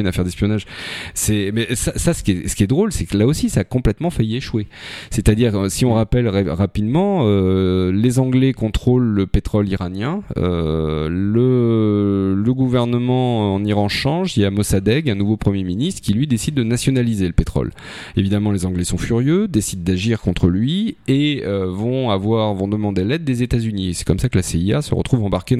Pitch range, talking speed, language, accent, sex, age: 95-125 Hz, 200 wpm, French, French, male, 30-49